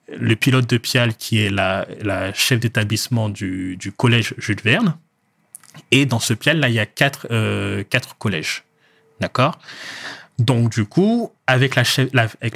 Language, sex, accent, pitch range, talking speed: French, male, French, 105-130 Hz, 150 wpm